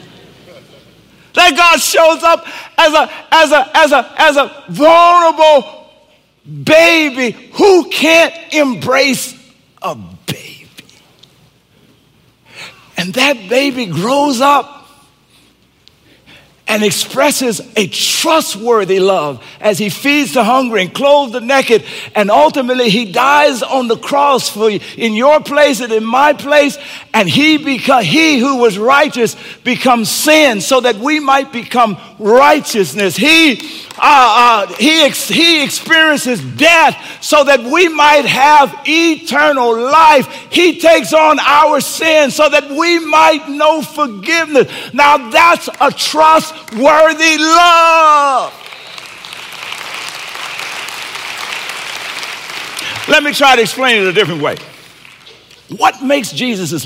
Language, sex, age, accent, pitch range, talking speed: English, male, 50-69, American, 240-310 Hz, 120 wpm